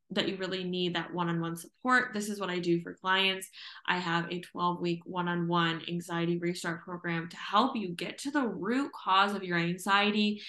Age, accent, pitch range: 20-39, American, 175-200 Hz